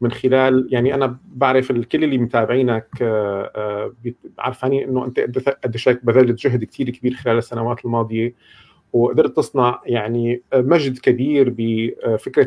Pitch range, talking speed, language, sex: 115-130 Hz, 120 wpm, Arabic, male